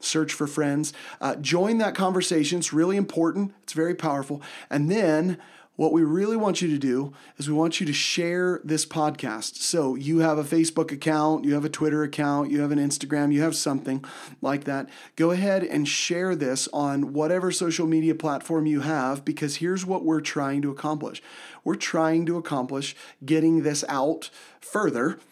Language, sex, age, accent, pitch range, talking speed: English, male, 40-59, American, 145-165 Hz, 185 wpm